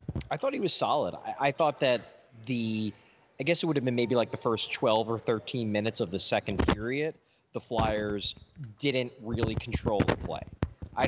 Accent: American